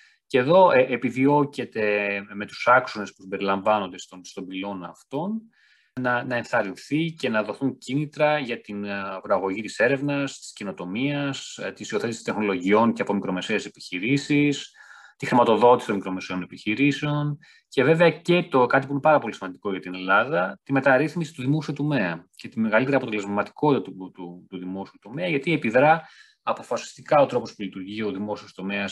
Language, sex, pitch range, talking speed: Greek, male, 100-145 Hz, 160 wpm